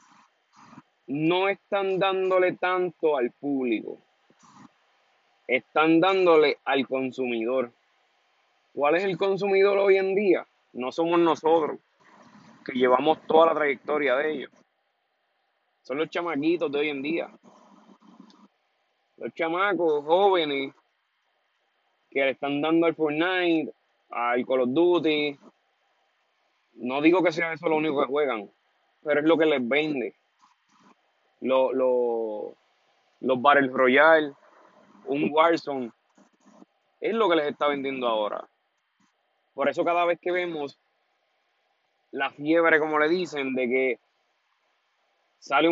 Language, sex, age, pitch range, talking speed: Spanish, male, 30-49, 140-185 Hz, 120 wpm